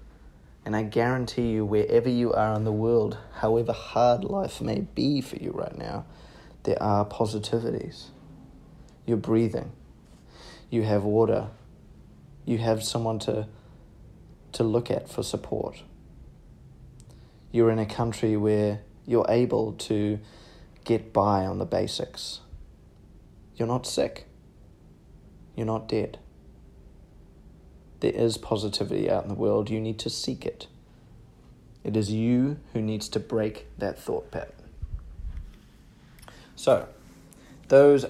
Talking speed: 125 wpm